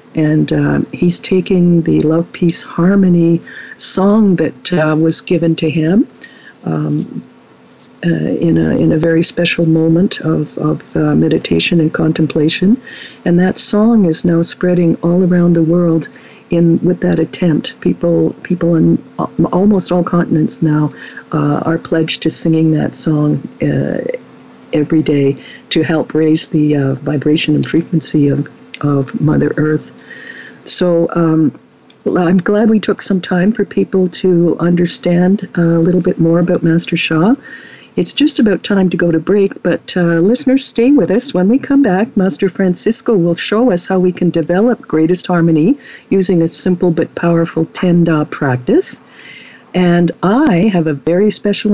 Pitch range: 160-190 Hz